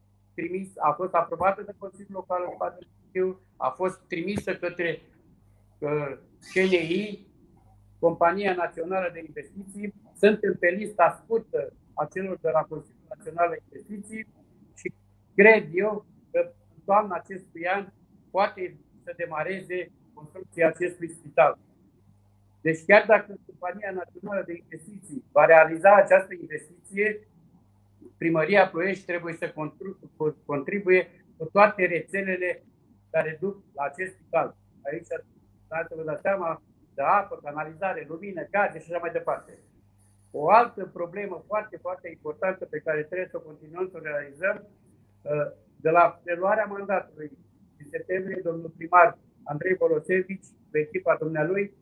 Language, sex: Romanian, male